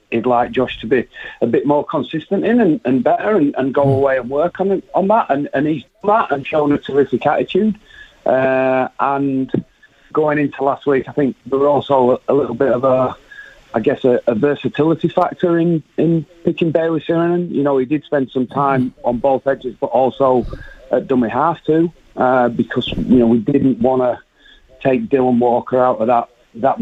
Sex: male